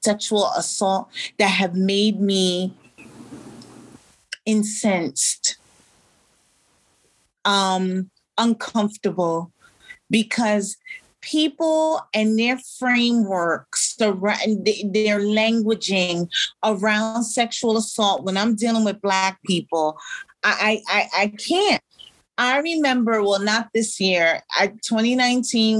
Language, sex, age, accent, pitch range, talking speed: English, female, 30-49, American, 200-245 Hz, 85 wpm